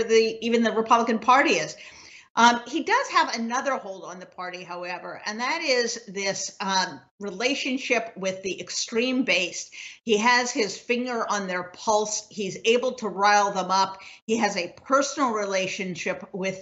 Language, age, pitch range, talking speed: English, 50-69, 195-240 Hz, 165 wpm